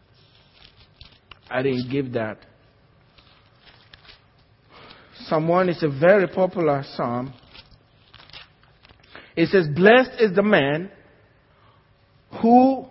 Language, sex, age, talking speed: English, male, 50-69, 80 wpm